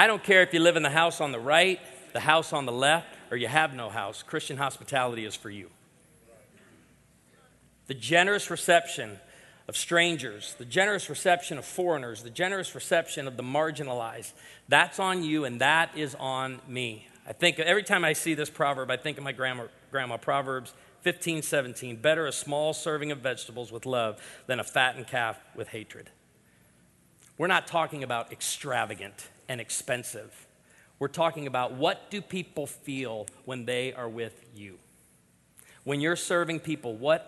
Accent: American